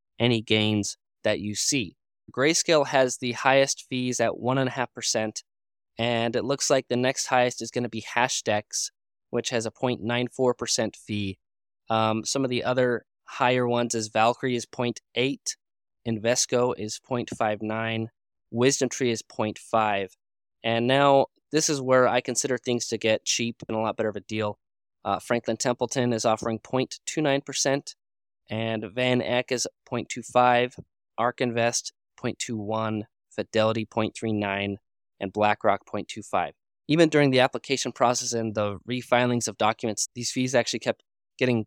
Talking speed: 145 wpm